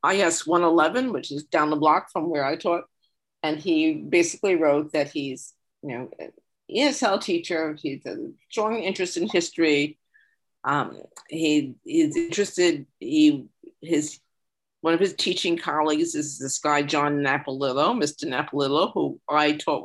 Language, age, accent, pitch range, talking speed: English, 50-69, American, 145-180 Hz, 140 wpm